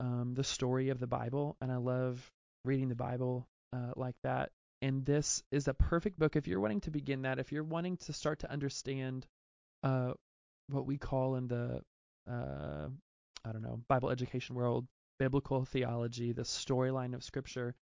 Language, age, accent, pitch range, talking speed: English, 20-39, American, 130-150 Hz, 180 wpm